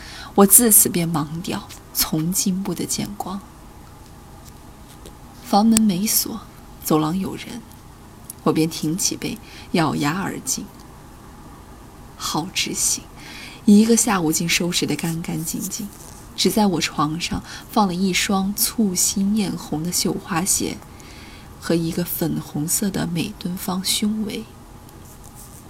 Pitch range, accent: 155-210 Hz, native